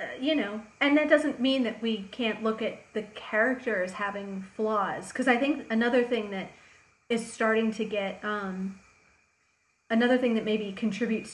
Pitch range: 195-230 Hz